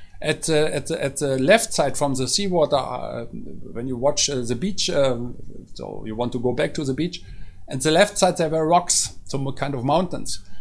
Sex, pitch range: male, 135-185 Hz